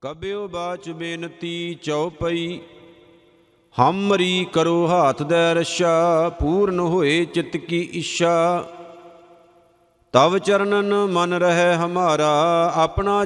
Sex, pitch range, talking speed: male, 170-180 Hz, 90 wpm